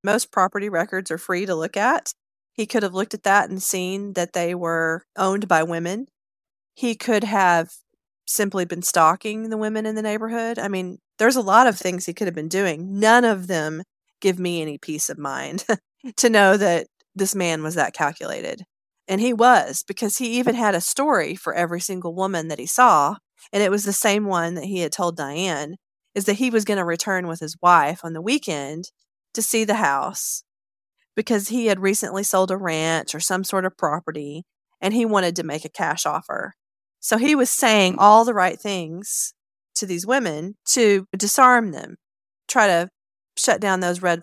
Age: 40-59